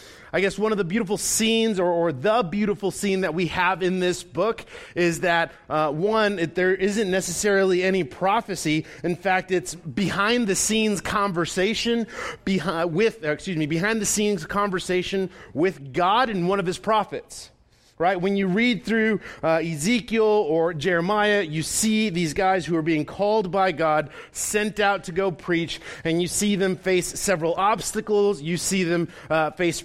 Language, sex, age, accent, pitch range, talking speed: English, male, 30-49, American, 165-205 Hz, 175 wpm